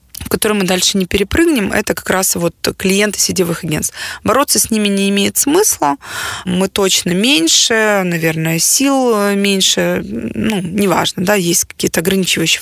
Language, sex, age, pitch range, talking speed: Ukrainian, female, 20-39, 175-215 Hz, 145 wpm